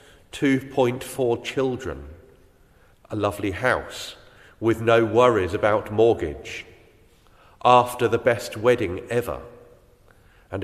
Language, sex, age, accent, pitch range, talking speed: English, male, 40-59, British, 100-120 Hz, 85 wpm